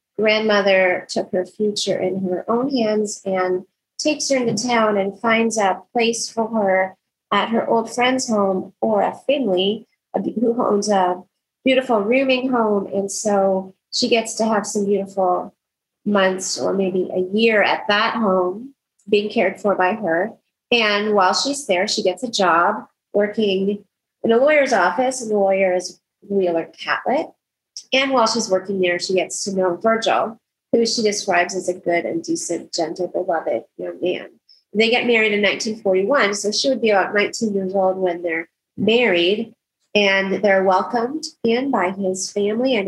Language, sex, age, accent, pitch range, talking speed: English, female, 30-49, American, 185-230 Hz, 170 wpm